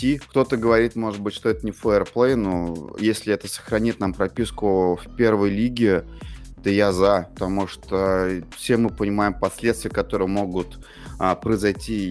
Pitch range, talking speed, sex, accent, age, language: 90-110 Hz, 145 wpm, male, native, 20-39, Russian